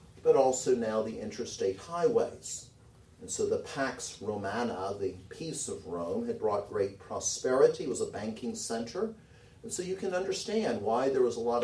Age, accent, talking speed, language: 40-59, American, 170 wpm, English